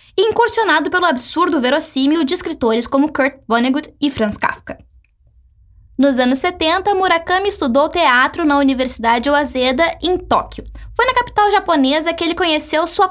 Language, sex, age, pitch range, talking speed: Portuguese, female, 10-29, 265-350 Hz, 145 wpm